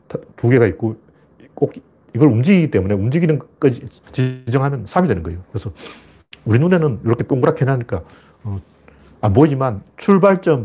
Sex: male